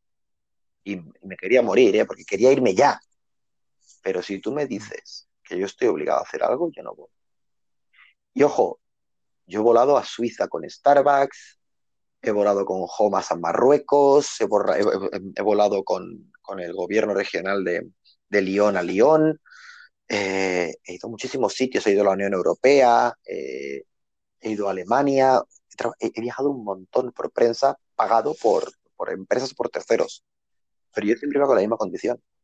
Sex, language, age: male, Spanish, 30-49